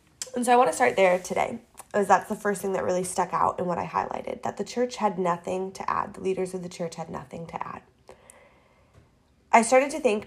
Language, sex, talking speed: English, female, 240 wpm